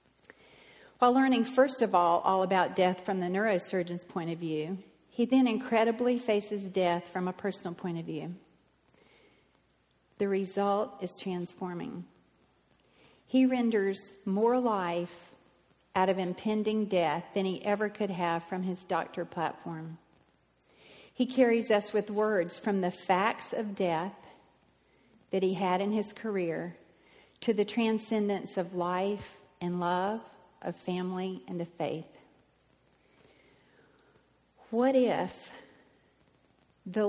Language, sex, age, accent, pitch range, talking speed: English, female, 50-69, American, 180-220 Hz, 125 wpm